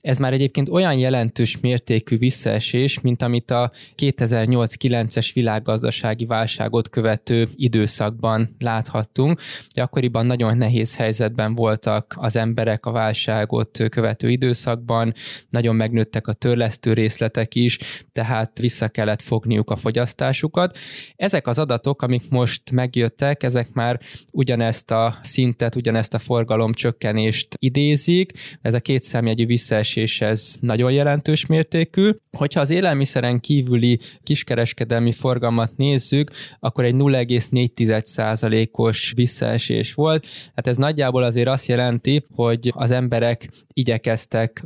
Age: 20-39